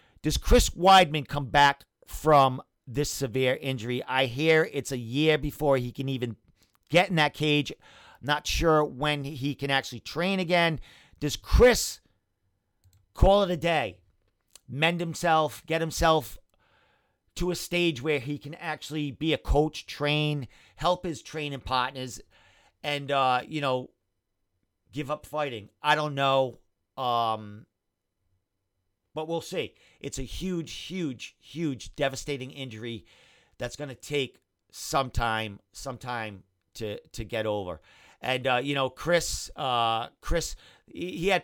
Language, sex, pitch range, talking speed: English, male, 120-155 Hz, 140 wpm